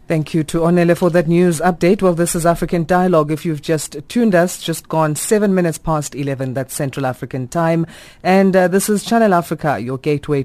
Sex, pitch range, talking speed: female, 140-175 Hz, 205 wpm